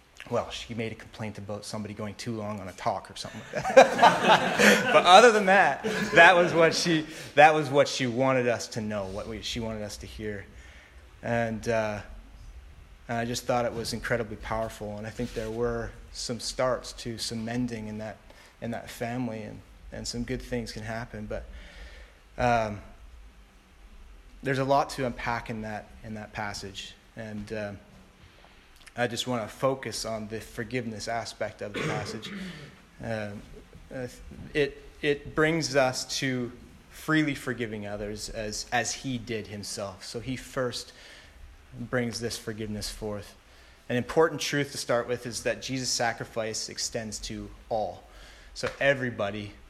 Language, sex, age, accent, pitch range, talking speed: English, male, 30-49, American, 105-125 Hz, 160 wpm